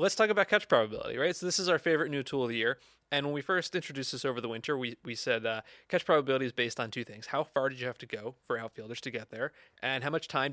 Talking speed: 295 wpm